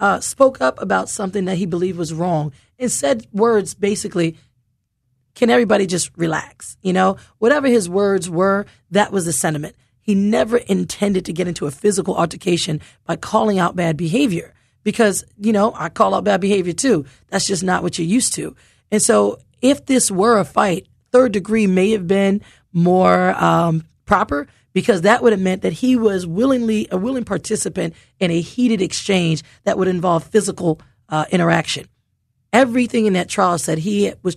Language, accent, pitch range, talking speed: English, American, 170-210 Hz, 180 wpm